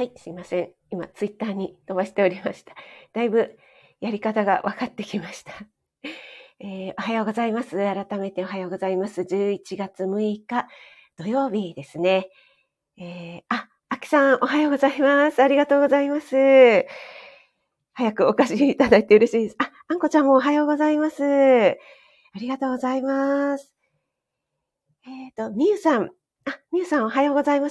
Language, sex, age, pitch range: Japanese, female, 40-59, 190-270 Hz